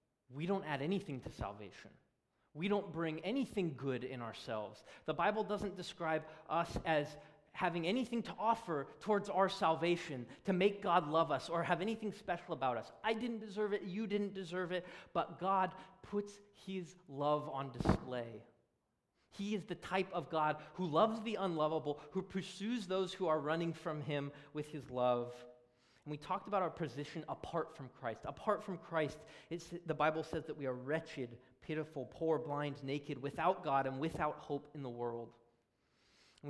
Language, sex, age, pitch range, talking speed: English, male, 30-49, 135-180 Hz, 175 wpm